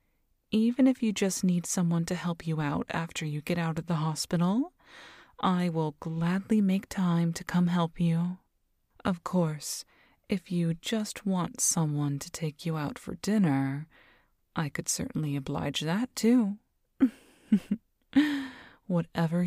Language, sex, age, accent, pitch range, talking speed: English, female, 30-49, American, 155-205 Hz, 140 wpm